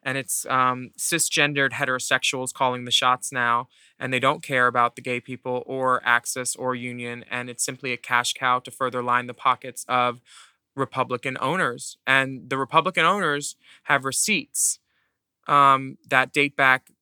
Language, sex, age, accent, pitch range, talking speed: English, male, 20-39, American, 125-135 Hz, 160 wpm